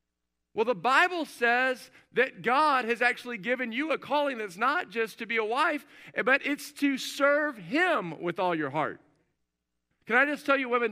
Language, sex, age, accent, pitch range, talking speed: English, male, 50-69, American, 165-255 Hz, 185 wpm